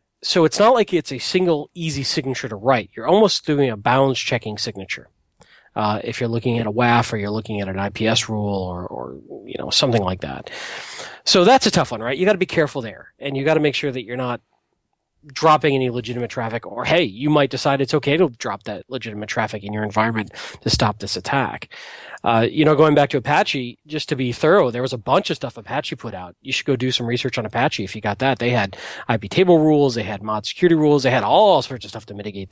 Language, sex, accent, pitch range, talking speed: English, male, American, 110-155 Hz, 245 wpm